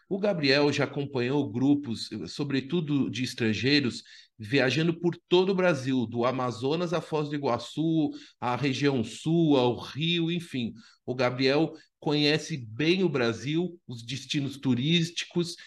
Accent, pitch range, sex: Brazilian, 130-175 Hz, male